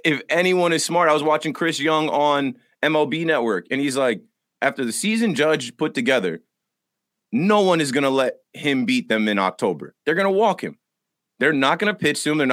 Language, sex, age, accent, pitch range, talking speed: English, male, 30-49, American, 135-170 Hz, 215 wpm